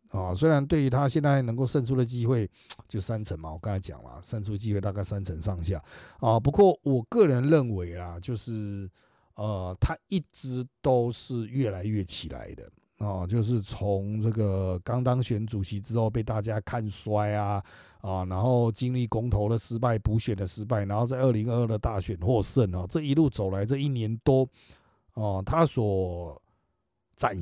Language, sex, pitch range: Chinese, male, 100-135 Hz